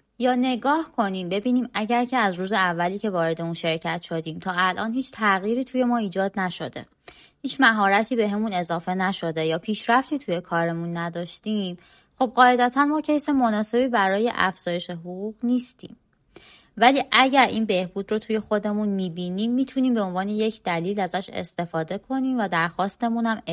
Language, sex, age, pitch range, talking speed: Persian, female, 20-39, 175-235 Hz, 150 wpm